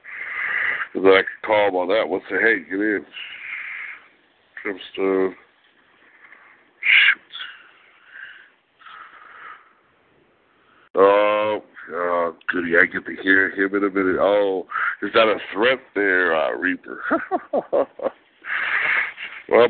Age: 60-79